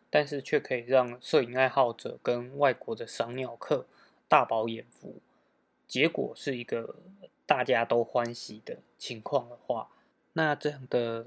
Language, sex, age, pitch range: Chinese, male, 20-39, 120-140 Hz